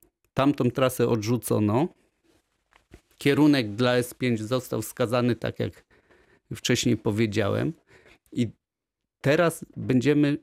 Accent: native